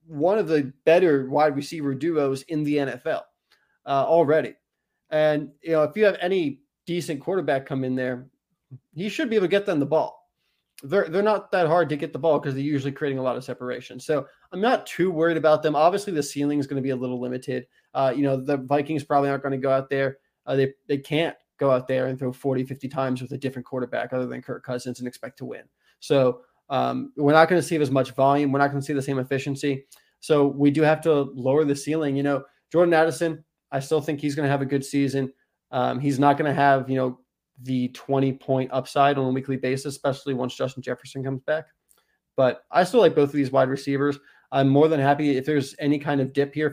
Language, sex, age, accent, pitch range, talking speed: English, male, 20-39, American, 135-155 Hz, 240 wpm